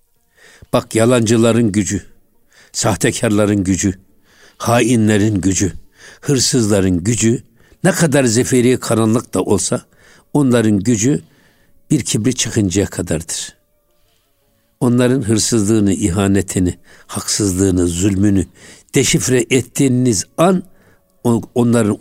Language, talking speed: Turkish, 80 wpm